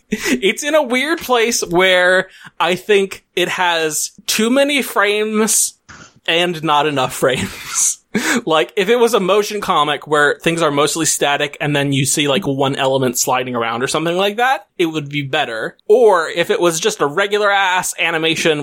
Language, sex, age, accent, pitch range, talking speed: English, male, 20-39, American, 150-235 Hz, 175 wpm